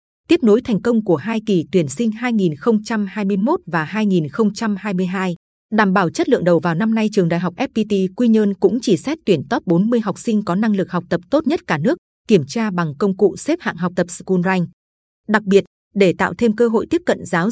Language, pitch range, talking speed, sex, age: Vietnamese, 185-225 Hz, 220 wpm, female, 20-39